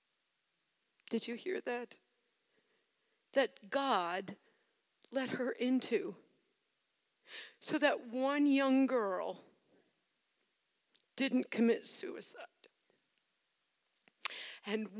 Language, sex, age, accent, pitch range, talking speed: English, female, 50-69, American, 185-235 Hz, 70 wpm